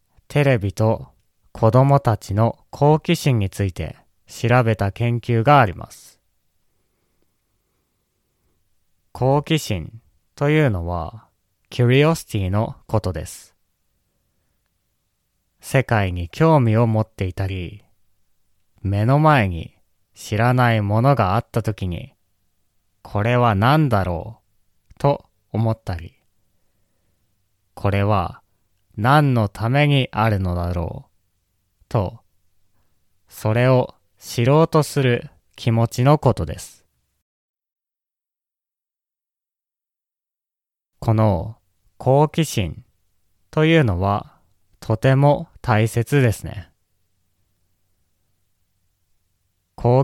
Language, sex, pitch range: Japanese, male, 95-120 Hz